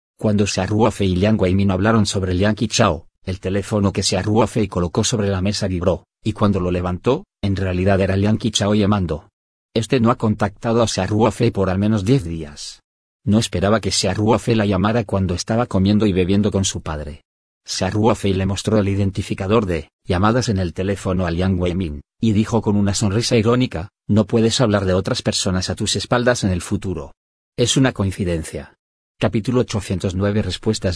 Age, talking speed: 40-59, 185 wpm